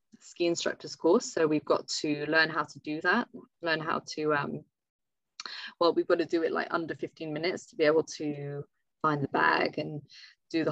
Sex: female